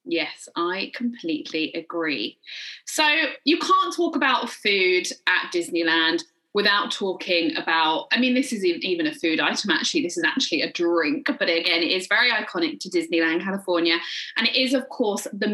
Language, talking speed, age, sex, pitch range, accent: English, 170 wpm, 20-39, female, 185-280 Hz, British